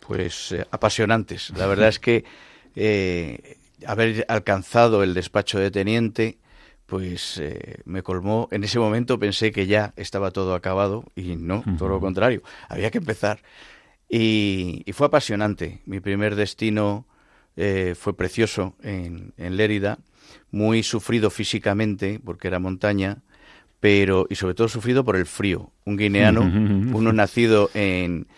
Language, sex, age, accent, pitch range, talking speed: Spanish, male, 50-69, Spanish, 100-115 Hz, 140 wpm